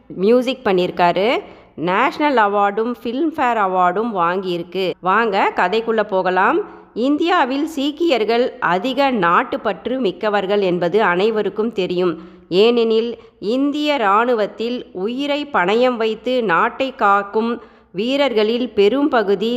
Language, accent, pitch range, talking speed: Tamil, native, 190-245 Hz, 90 wpm